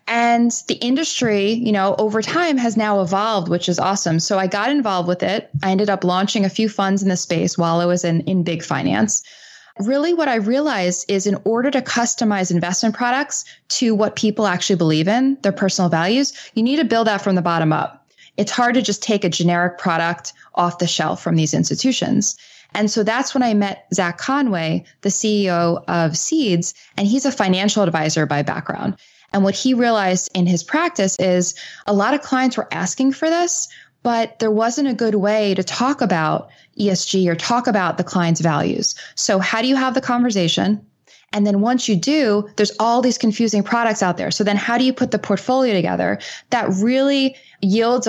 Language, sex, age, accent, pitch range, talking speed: English, female, 20-39, American, 180-240 Hz, 200 wpm